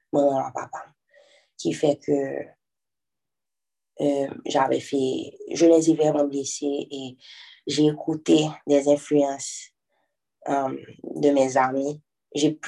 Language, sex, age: French, female, 20-39